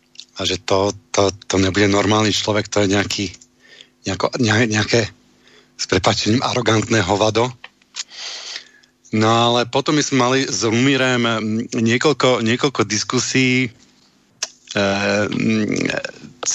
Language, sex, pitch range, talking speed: Slovak, male, 105-120 Hz, 100 wpm